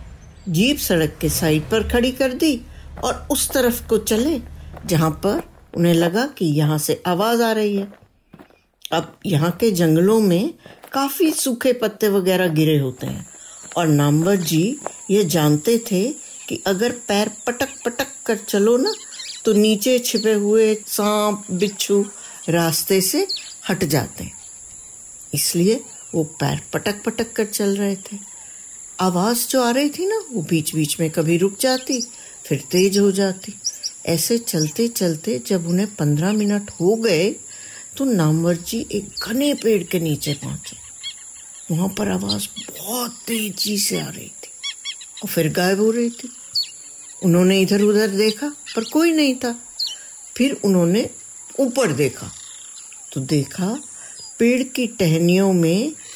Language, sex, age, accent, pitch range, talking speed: Hindi, female, 60-79, native, 170-240 Hz, 145 wpm